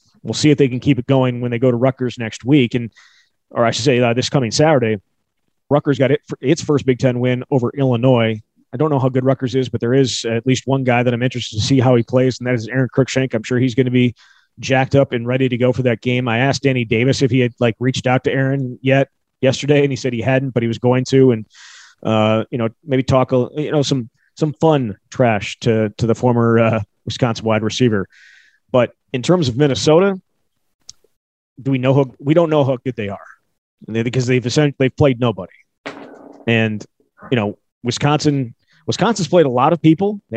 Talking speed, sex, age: 230 wpm, male, 30-49